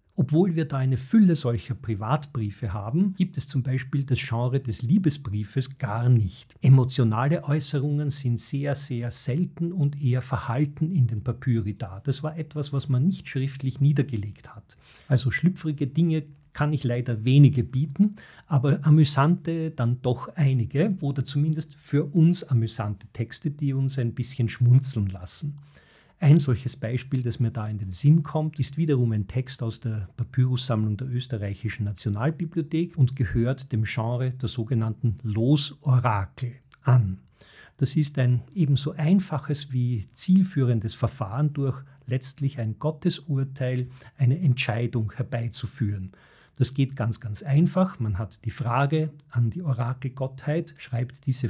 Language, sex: German, male